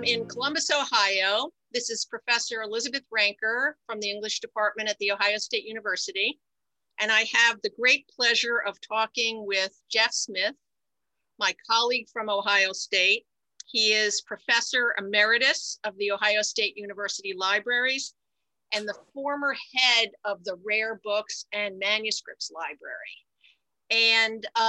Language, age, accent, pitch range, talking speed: English, 50-69, American, 205-250 Hz, 135 wpm